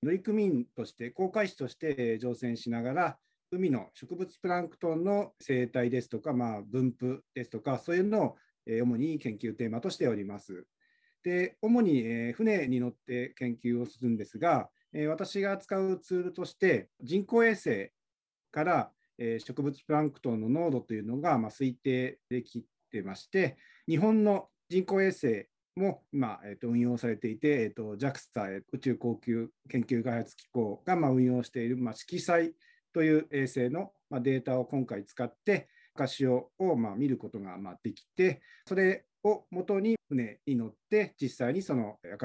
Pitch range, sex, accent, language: 120-185 Hz, male, native, Japanese